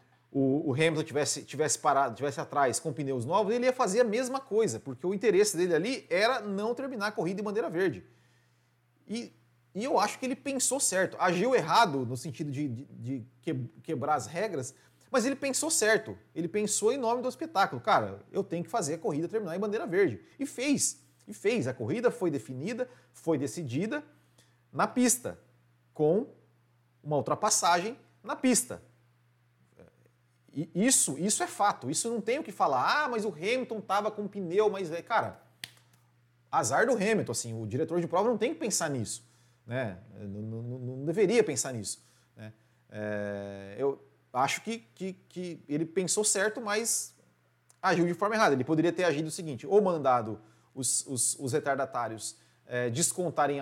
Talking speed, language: 170 wpm, Portuguese